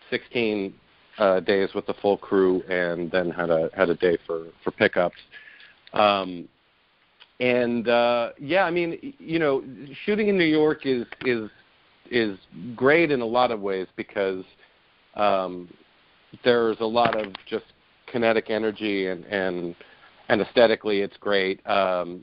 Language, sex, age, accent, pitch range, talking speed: English, male, 40-59, American, 95-120 Hz, 145 wpm